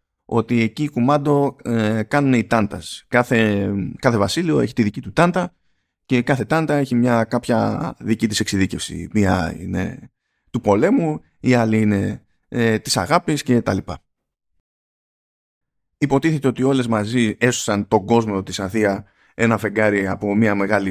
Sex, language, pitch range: male, Greek, 105-145 Hz